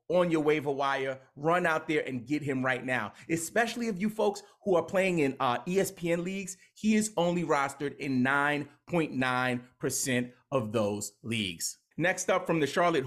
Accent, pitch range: American, 140-185 Hz